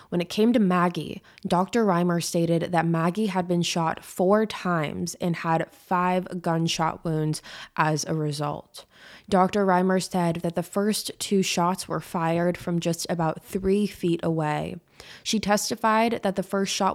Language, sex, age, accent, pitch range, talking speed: English, female, 20-39, American, 165-195 Hz, 160 wpm